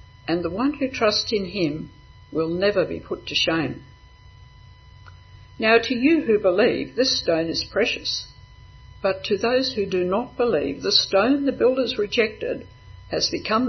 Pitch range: 160-215 Hz